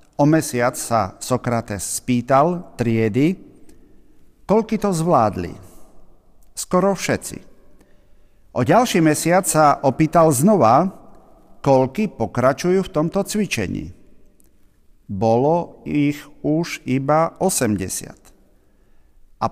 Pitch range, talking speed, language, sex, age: 110-160 Hz, 85 wpm, Slovak, male, 50-69